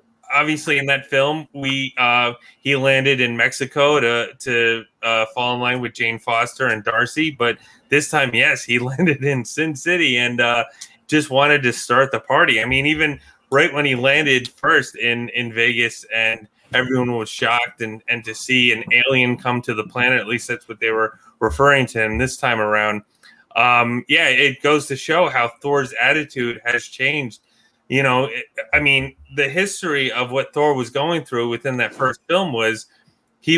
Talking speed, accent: 185 wpm, American